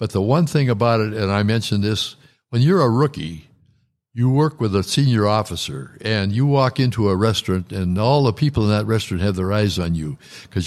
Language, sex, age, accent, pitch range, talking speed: English, male, 60-79, American, 105-130 Hz, 220 wpm